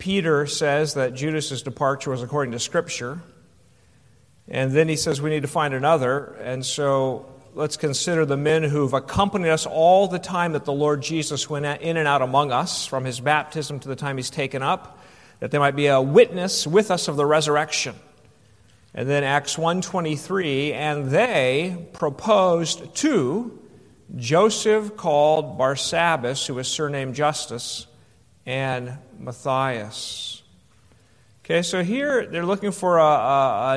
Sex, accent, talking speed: male, American, 150 wpm